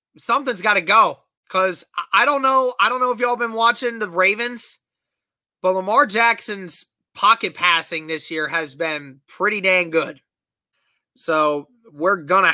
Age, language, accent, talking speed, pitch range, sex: 20-39, English, American, 155 wpm, 165-225 Hz, male